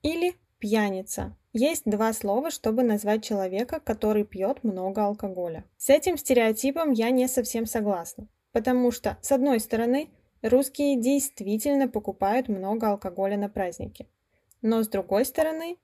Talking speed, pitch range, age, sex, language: 135 wpm, 210-265 Hz, 10-29, female, Russian